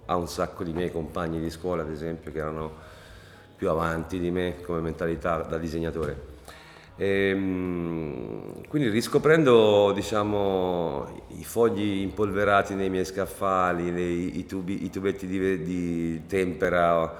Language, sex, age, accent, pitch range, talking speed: Italian, male, 40-59, native, 85-100 Hz, 130 wpm